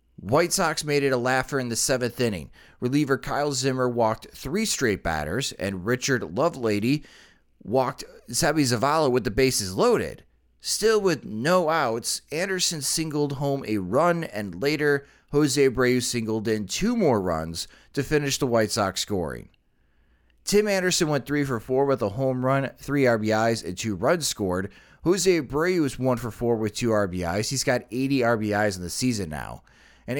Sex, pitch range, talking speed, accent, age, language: male, 105-150 Hz, 170 wpm, American, 30-49, English